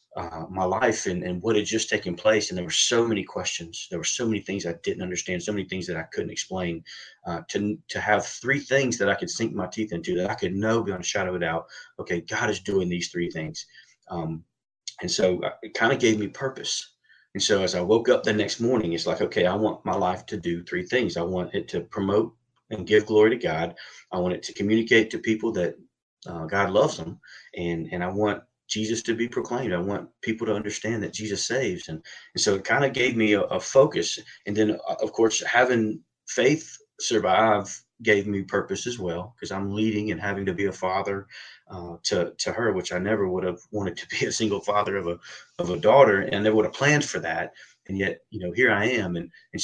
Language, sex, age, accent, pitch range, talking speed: English, male, 30-49, American, 90-115 Hz, 240 wpm